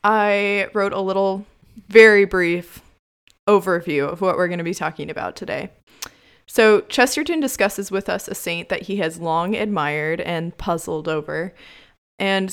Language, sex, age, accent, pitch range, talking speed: English, female, 20-39, American, 175-215 Hz, 155 wpm